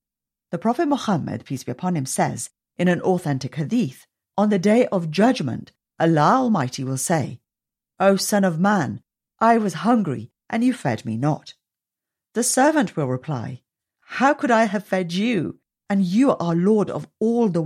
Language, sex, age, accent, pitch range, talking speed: English, female, 50-69, British, 140-210 Hz, 170 wpm